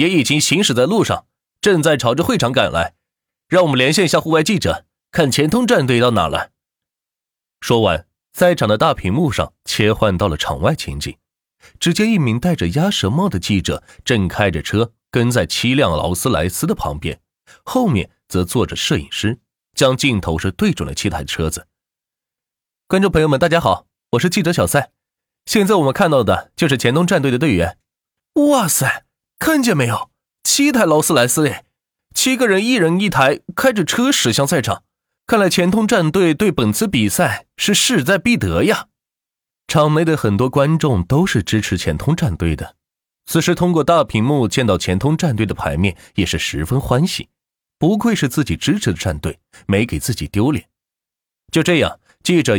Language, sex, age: Chinese, male, 30-49